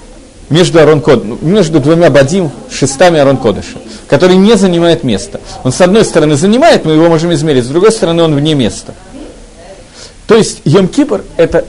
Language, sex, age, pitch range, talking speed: Russian, male, 40-59, 140-195 Hz, 155 wpm